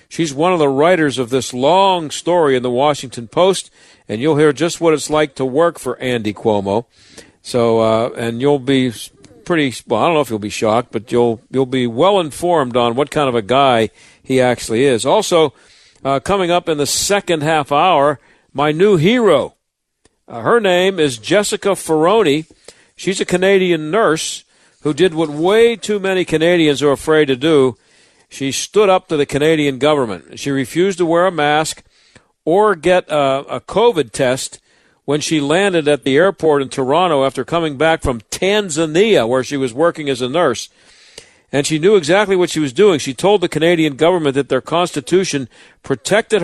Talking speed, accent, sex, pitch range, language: 185 wpm, American, male, 135-175 Hz, English